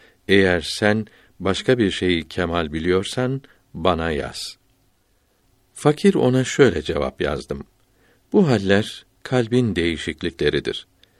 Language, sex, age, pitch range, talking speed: Turkish, male, 60-79, 90-115 Hz, 95 wpm